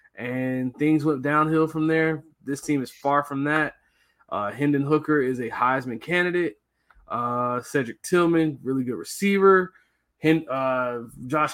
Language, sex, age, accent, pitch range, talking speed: English, male, 20-39, American, 125-155 Hz, 140 wpm